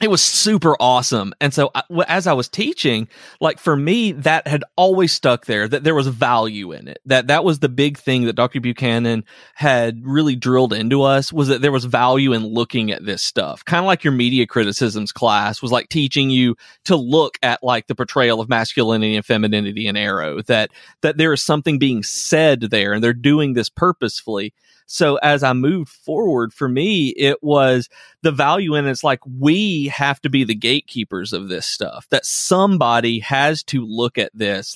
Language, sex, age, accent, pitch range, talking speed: English, male, 30-49, American, 115-145 Hz, 195 wpm